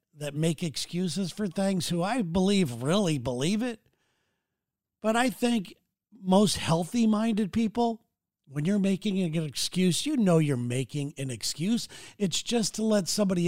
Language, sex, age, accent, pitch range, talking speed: English, male, 50-69, American, 150-200 Hz, 150 wpm